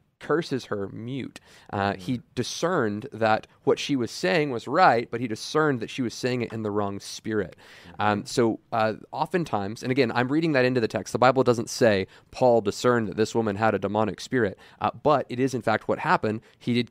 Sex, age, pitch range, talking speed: male, 20-39, 110-125 Hz, 215 wpm